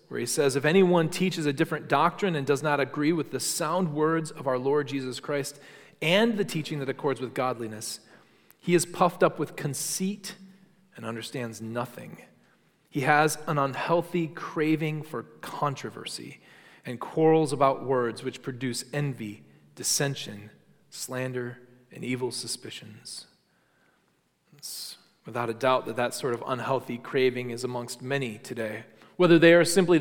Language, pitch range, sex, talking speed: English, 125-165 Hz, male, 150 wpm